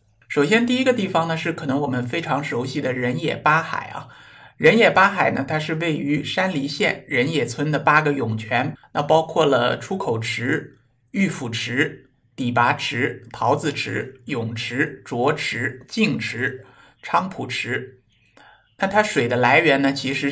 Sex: male